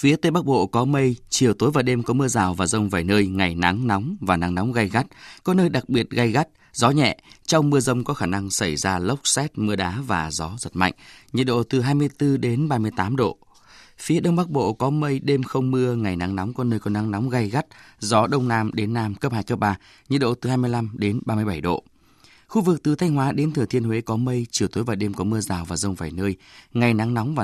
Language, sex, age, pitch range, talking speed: Vietnamese, male, 20-39, 100-135 Hz, 250 wpm